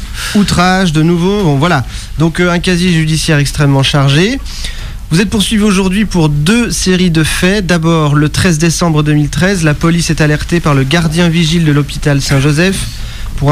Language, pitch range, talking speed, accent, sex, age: French, 140-180 Hz, 170 wpm, French, male, 40-59